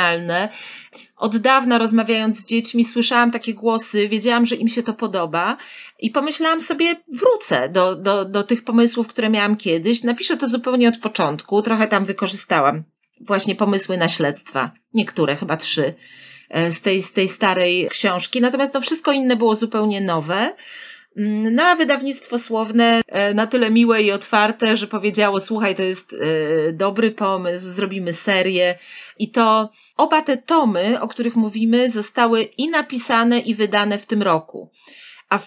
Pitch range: 195-235 Hz